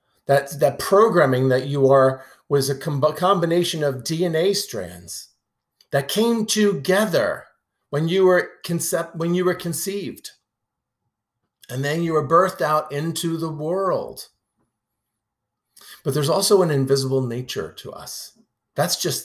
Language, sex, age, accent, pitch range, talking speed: English, male, 50-69, American, 125-170 Hz, 120 wpm